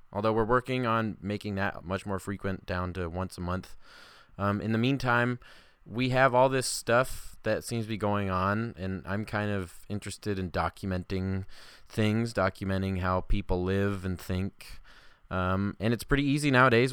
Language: English